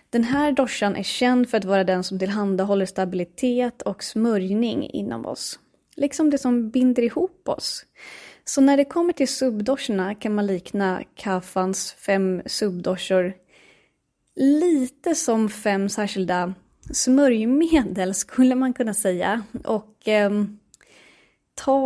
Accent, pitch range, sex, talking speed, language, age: native, 190-250 Hz, female, 125 wpm, Swedish, 20-39